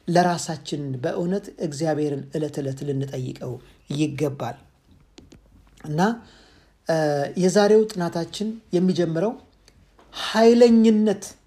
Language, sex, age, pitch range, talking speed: Amharic, male, 50-69, 165-225 Hz, 60 wpm